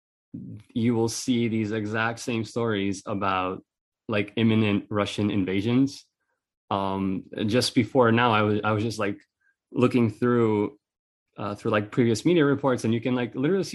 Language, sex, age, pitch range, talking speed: English, male, 20-39, 100-120 Hz, 155 wpm